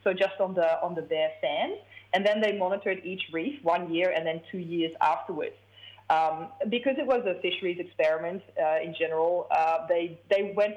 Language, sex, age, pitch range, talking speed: English, female, 20-39, 165-235 Hz, 195 wpm